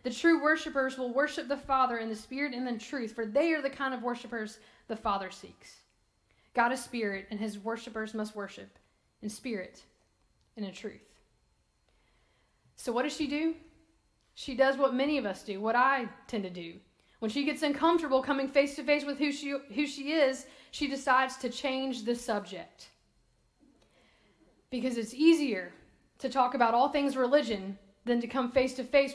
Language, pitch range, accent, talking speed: English, 235-290 Hz, American, 175 wpm